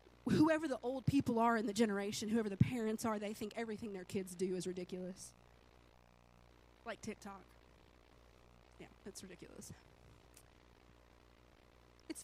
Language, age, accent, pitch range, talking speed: English, 30-49, American, 200-310 Hz, 125 wpm